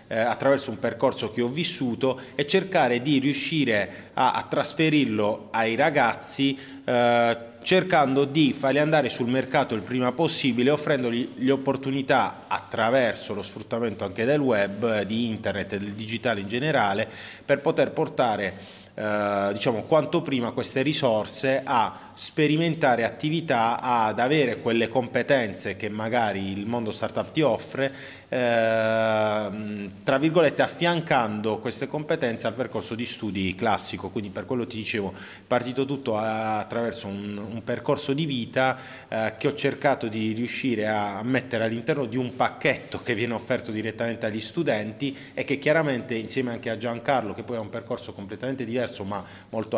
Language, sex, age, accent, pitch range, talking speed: Italian, male, 30-49, native, 105-135 Hz, 150 wpm